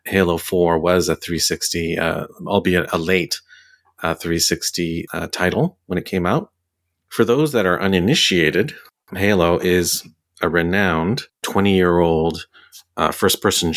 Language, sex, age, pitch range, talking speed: English, male, 40-59, 80-90 Hz, 125 wpm